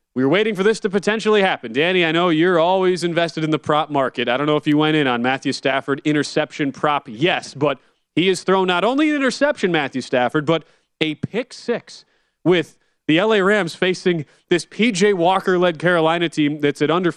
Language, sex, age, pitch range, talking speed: English, male, 30-49, 135-175 Hz, 205 wpm